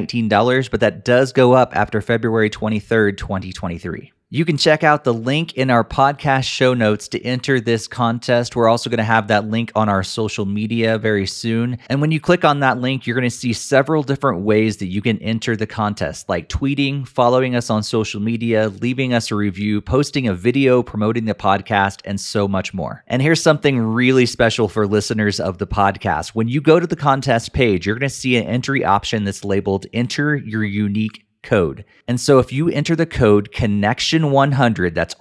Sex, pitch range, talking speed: male, 105-130 Hz, 200 wpm